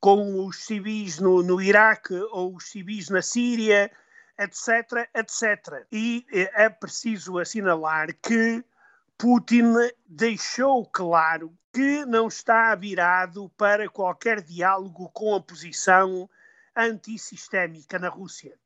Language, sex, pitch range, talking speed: Portuguese, male, 190-235 Hz, 110 wpm